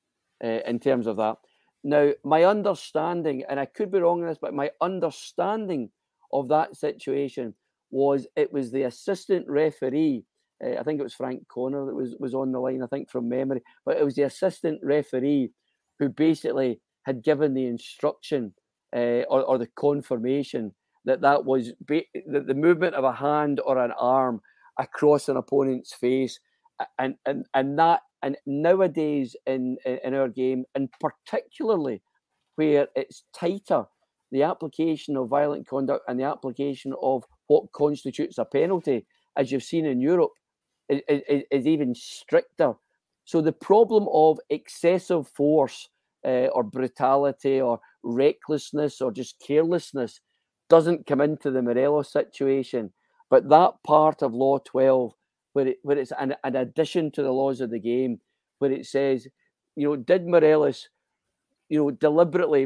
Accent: British